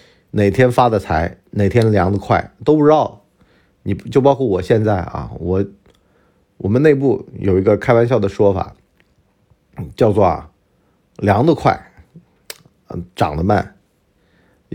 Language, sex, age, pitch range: Chinese, male, 50-69, 100-130 Hz